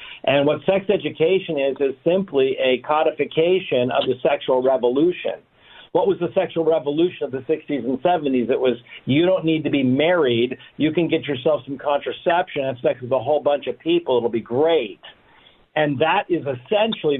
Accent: American